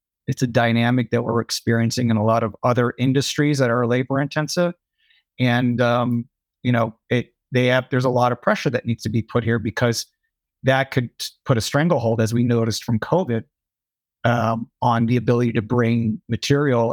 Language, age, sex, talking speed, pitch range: English, 30-49, male, 185 wpm, 120-145 Hz